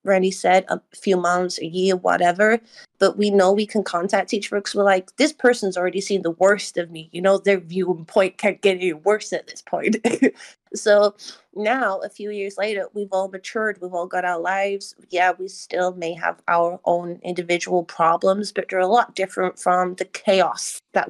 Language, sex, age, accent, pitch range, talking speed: English, female, 30-49, American, 185-225 Hz, 195 wpm